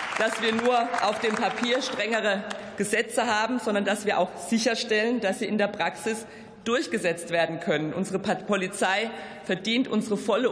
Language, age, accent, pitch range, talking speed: German, 50-69, German, 200-235 Hz, 155 wpm